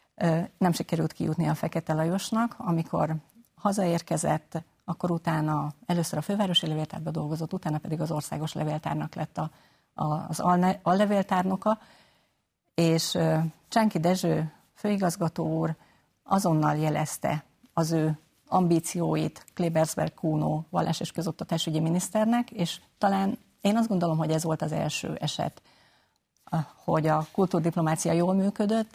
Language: Hungarian